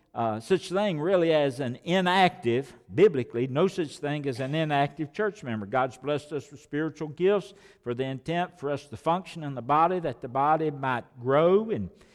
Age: 60-79